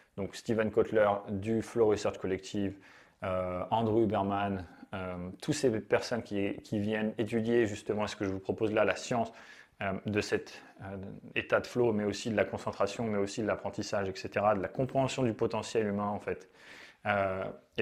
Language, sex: French, male